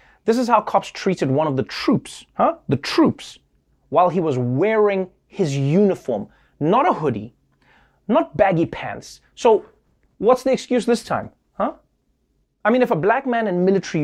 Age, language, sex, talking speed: 30-49, English, male, 165 wpm